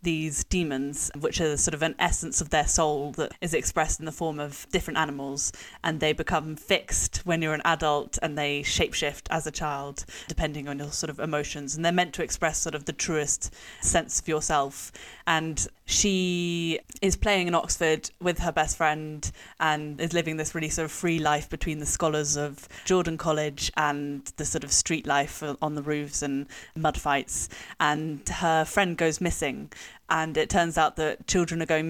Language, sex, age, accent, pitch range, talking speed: English, female, 20-39, British, 150-170 Hz, 190 wpm